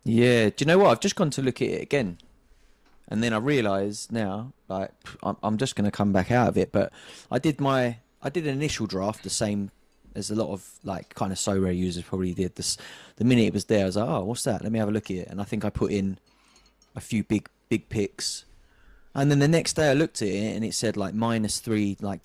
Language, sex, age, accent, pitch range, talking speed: English, male, 20-39, British, 105-135 Hz, 260 wpm